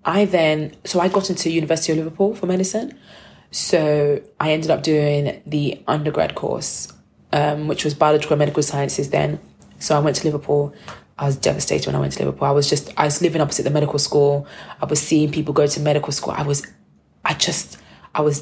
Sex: female